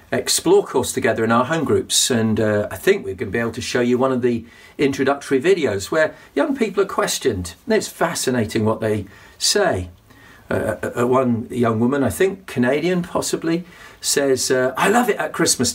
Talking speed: 190 wpm